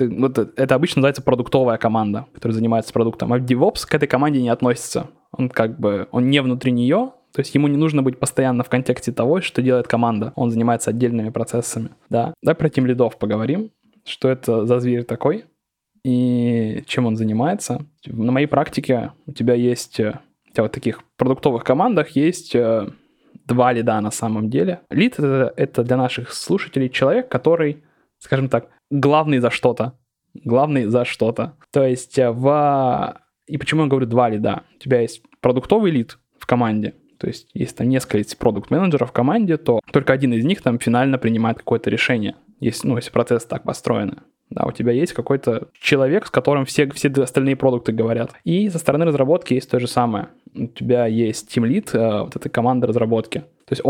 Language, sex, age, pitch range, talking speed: Russian, male, 20-39, 120-140 Hz, 180 wpm